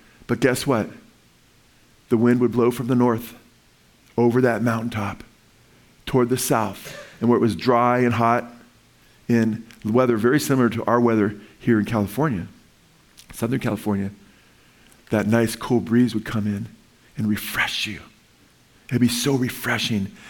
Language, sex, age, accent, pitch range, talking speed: English, male, 40-59, American, 115-135 Hz, 145 wpm